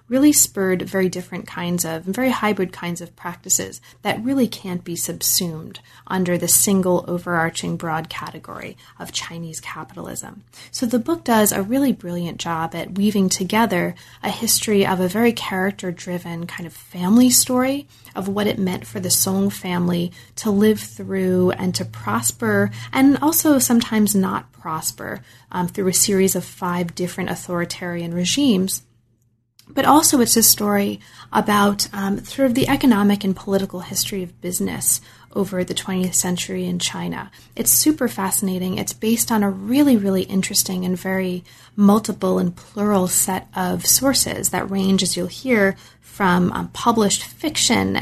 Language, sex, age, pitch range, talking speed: English, female, 30-49, 175-215 Hz, 155 wpm